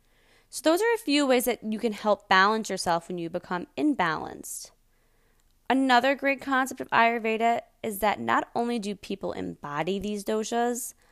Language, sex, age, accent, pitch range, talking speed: English, female, 20-39, American, 180-230 Hz, 160 wpm